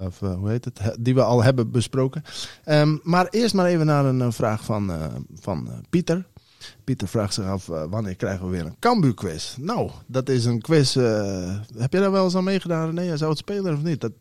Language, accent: English, Dutch